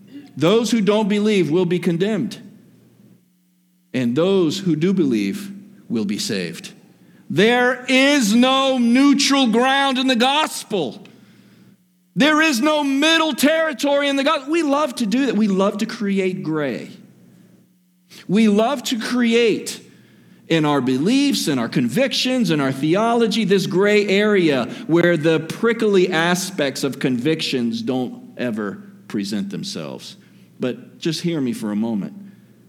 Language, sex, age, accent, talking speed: English, male, 50-69, American, 135 wpm